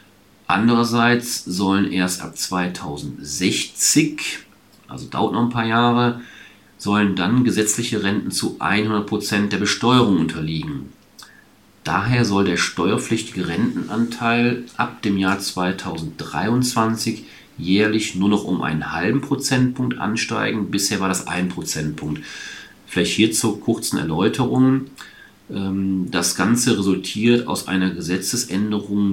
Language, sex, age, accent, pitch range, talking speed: German, male, 40-59, German, 95-120 Hz, 110 wpm